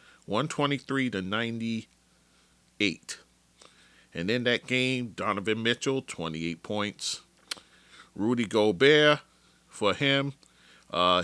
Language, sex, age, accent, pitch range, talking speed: English, male, 40-59, American, 90-120 Hz, 75 wpm